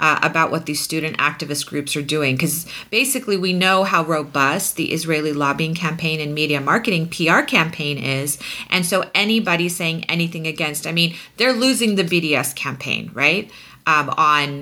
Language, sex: English, female